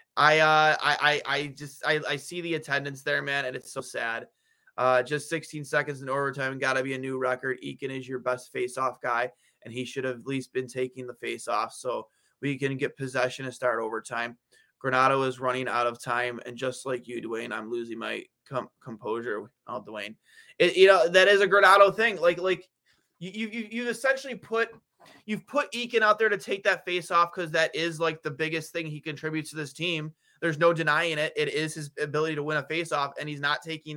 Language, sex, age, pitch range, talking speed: English, male, 20-39, 135-180 Hz, 215 wpm